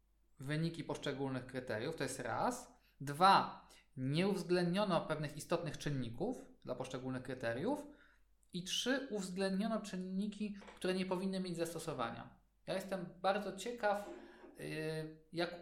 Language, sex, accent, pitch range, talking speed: Polish, male, native, 140-190 Hz, 110 wpm